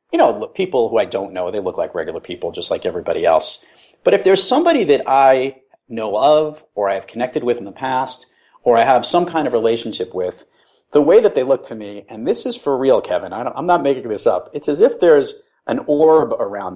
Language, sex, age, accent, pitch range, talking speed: English, male, 40-59, American, 115-190 Hz, 235 wpm